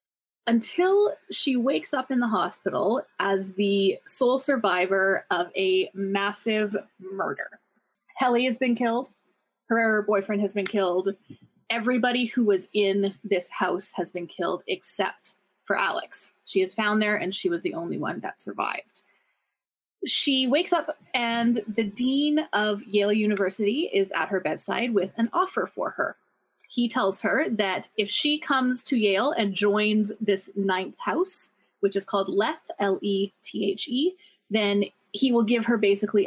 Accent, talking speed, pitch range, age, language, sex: American, 150 wpm, 195-245 Hz, 20-39, English, female